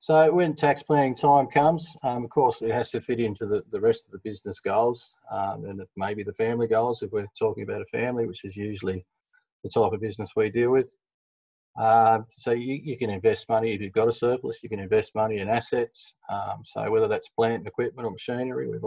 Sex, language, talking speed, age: male, English, 225 wpm, 30-49